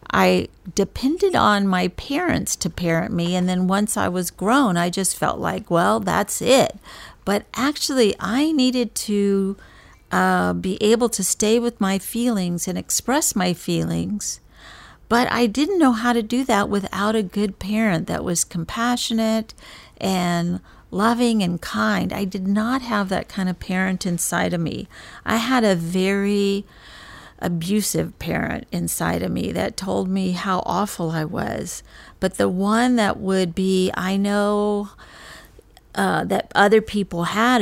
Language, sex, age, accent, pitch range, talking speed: English, female, 50-69, American, 175-220 Hz, 155 wpm